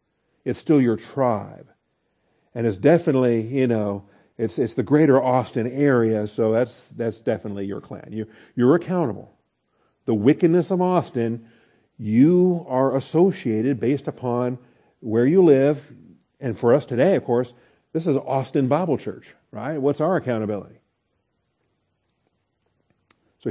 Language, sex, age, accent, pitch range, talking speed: English, male, 50-69, American, 120-170 Hz, 135 wpm